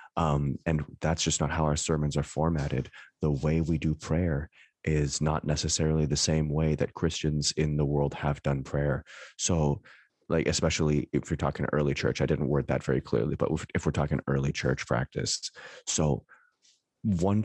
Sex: male